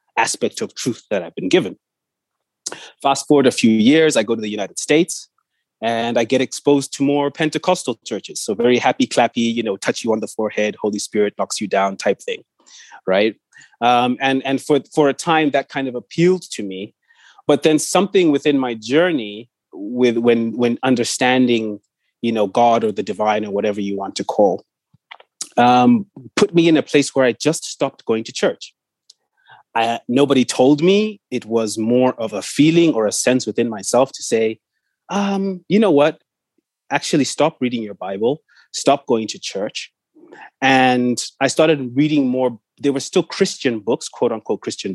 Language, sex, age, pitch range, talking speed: English, male, 30-49, 115-155 Hz, 180 wpm